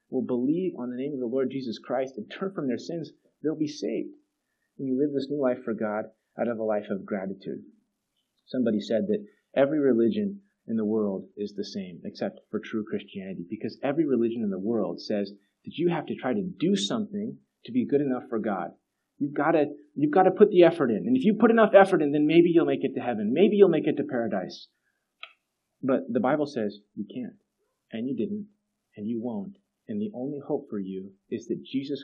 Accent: American